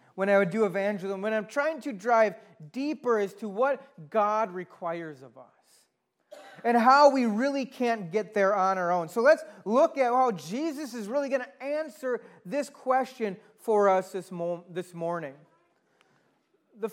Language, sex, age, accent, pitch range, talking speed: English, male, 30-49, American, 210-285 Hz, 165 wpm